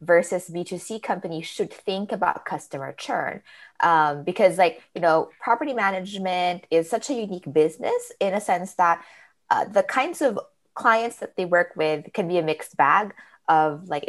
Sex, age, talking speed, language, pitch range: female, 20-39, 170 wpm, English, 165-215 Hz